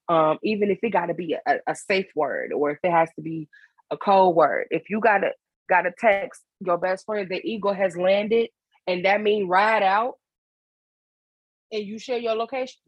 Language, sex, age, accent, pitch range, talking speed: English, female, 20-39, American, 175-225 Hz, 195 wpm